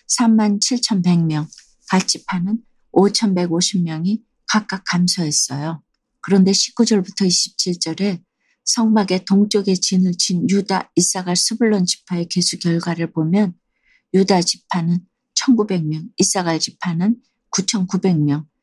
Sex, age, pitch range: female, 40-59, 165-200 Hz